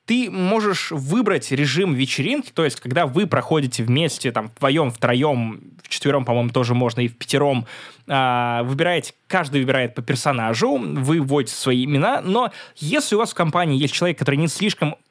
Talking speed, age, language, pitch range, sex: 170 wpm, 20-39, Russian, 125-165 Hz, male